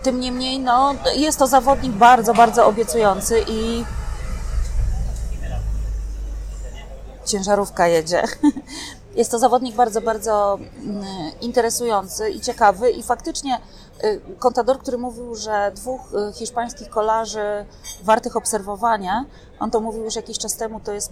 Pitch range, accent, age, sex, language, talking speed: 200-235 Hz, native, 30-49, female, Polish, 115 wpm